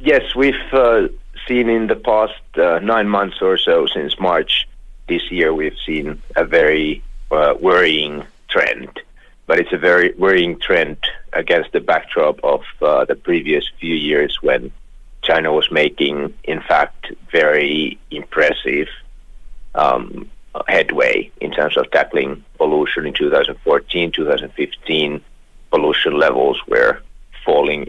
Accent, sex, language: Finnish, male, Korean